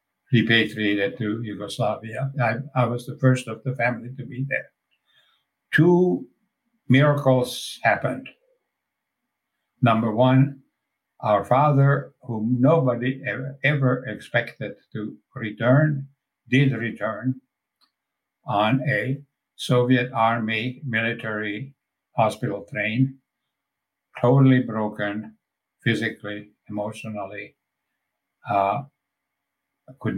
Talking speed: 85 wpm